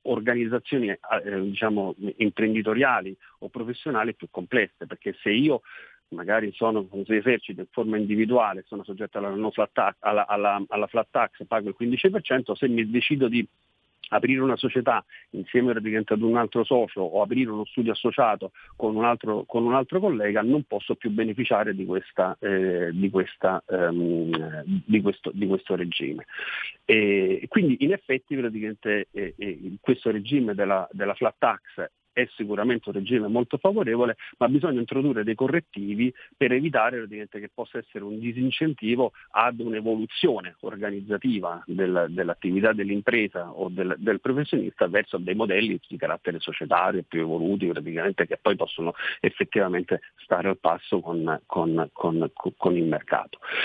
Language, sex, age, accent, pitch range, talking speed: Italian, male, 40-59, native, 100-125 Hz, 150 wpm